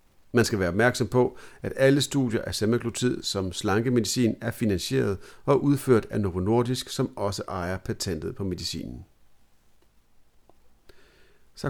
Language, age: Danish, 50-69